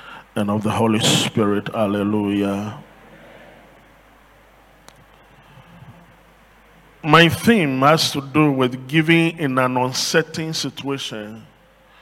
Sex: male